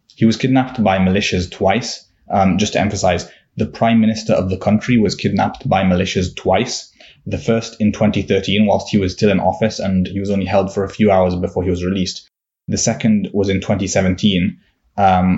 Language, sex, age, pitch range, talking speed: English, male, 20-39, 90-100 Hz, 190 wpm